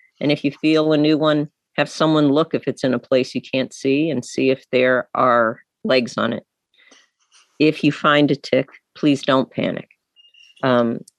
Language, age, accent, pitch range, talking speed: English, 50-69, American, 130-165 Hz, 190 wpm